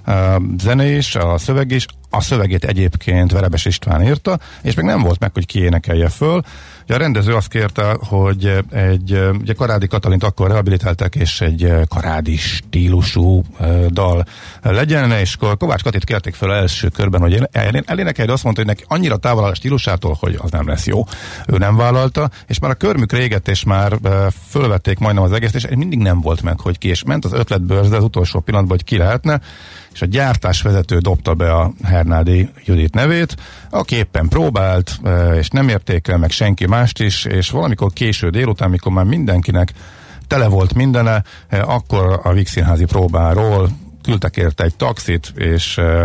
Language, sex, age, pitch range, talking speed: Hungarian, male, 50-69, 90-115 Hz, 175 wpm